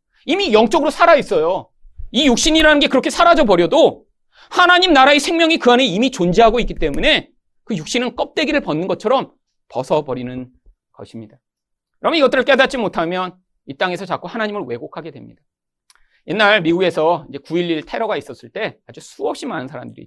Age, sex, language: 40-59, male, Korean